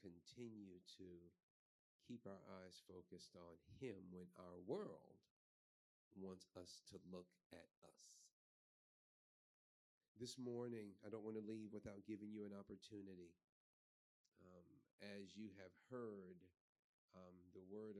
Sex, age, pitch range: male, 40-59, 90-110 Hz